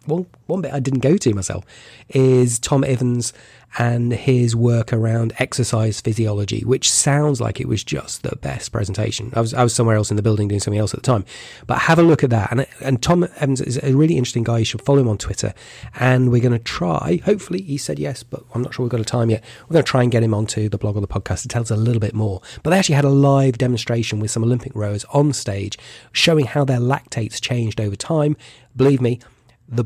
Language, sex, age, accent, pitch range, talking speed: English, male, 30-49, British, 110-130 Hz, 250 wpm